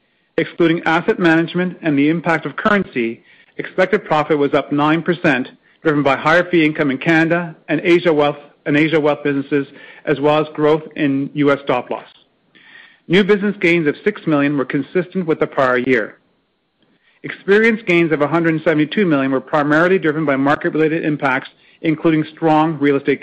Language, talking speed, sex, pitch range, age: English, 175 wpm, male, 145-170 Hz, 40-59